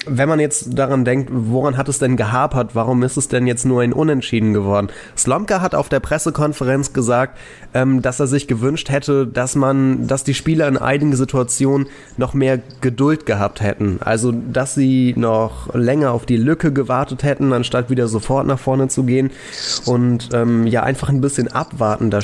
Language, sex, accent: German, male, German